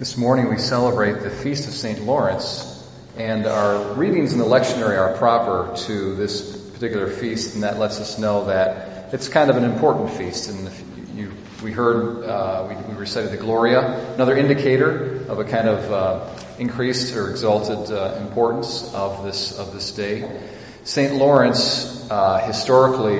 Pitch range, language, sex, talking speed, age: 105-125 Hz, English, male, 170 wpm, 40-59